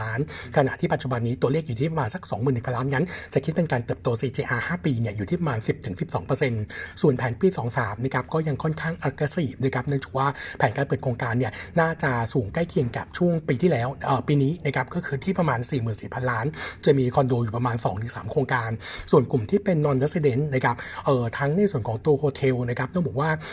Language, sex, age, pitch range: Thai, male, 60-79, 125-155 Hz